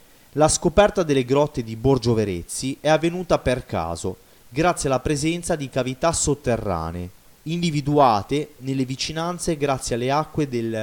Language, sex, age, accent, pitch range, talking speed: Italian, male, 30-49, native, 110-150 Hz, 125 wpm